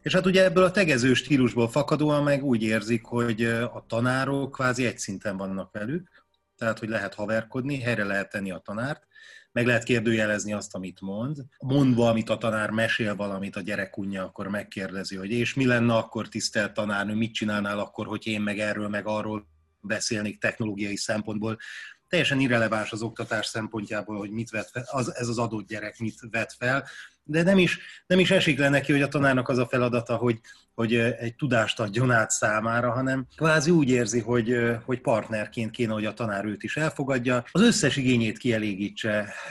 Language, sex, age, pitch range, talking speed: Hungarian, male, 30-49, 105-130 Hz, 180 wpm